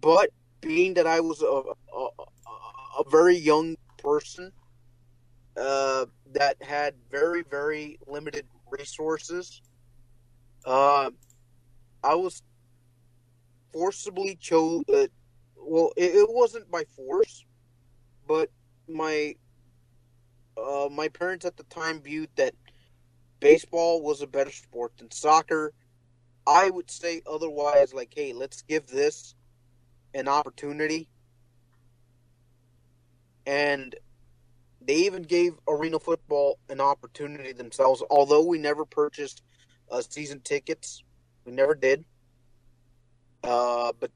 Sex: male